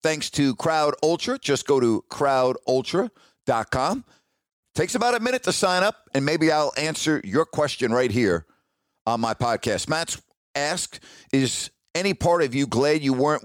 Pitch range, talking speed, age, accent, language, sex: 115-150 Hz, 160 wpm, 50-69, American, English, male